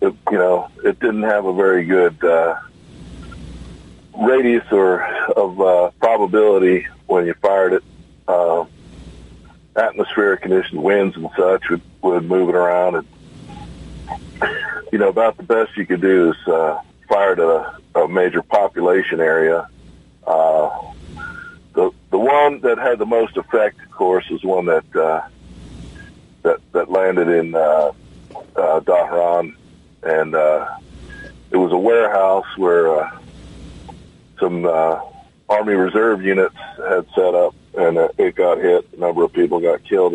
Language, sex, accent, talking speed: English, male, American, 145 wpm